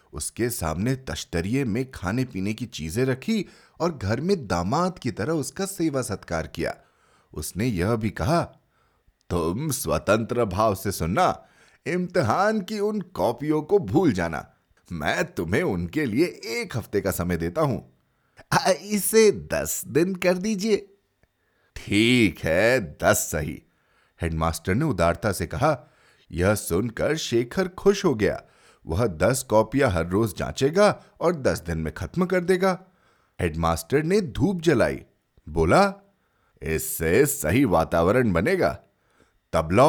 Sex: male